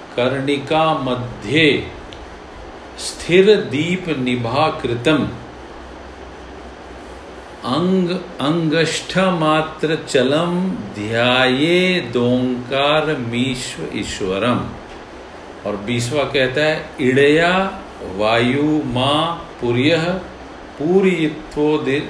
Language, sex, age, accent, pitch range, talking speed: Hindi, male, 50-69, native, 120-160 Hz, 50 wpm